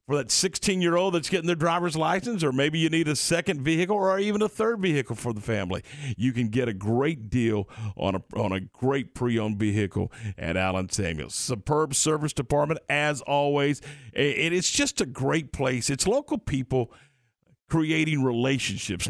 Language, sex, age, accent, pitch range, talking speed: English, male, 50-69, American, 115-160 Hz, 180 wpm